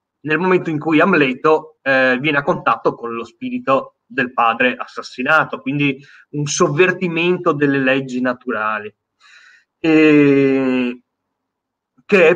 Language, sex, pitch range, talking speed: Italian, male, 130-160 Hz, 110 wpm